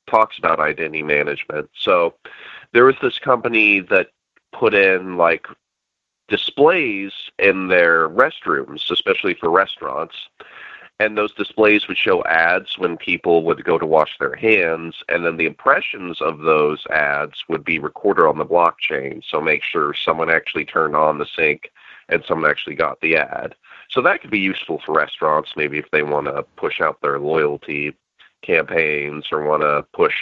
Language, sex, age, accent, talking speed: English, male, 30-49, American, 165 wpm